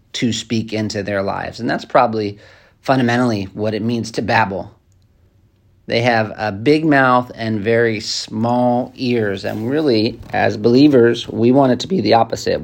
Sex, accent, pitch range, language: male, American, 105-125 Hz, English